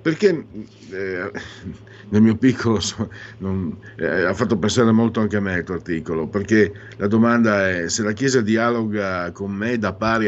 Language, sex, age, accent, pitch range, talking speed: Italian, male, 50-69, native, 90-110 Hz, 170 wpm